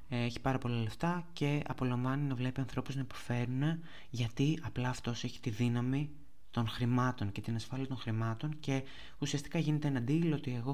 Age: 20-39